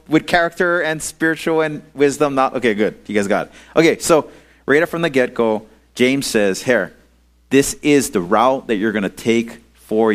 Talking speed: 190 wpm